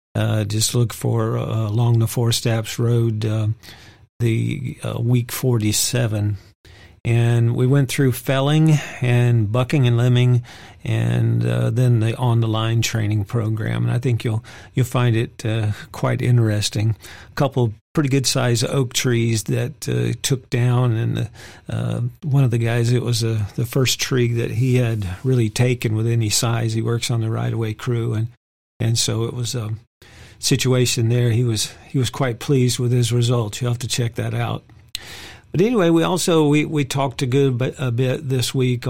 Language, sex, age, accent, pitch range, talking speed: English, male, 50-69, American, 110-130 Hz, 175 wpm